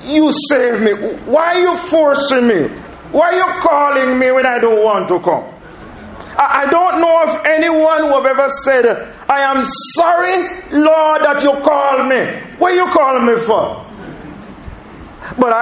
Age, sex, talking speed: 40-59, male, 165 wpm